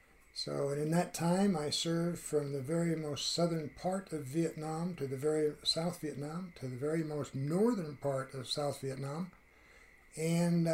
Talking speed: 170 wpm